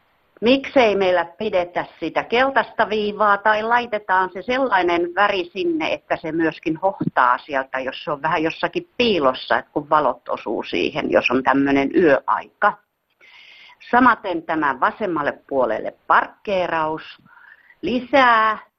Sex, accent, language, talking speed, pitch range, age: female, native, Finnish, 120 wpm, 170-235 Hz, 50-69